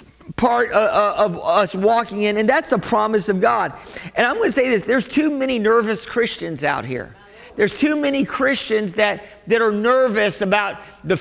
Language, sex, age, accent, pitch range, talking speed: English, male, 40-59, American, 205-240 Hz, 180 wpm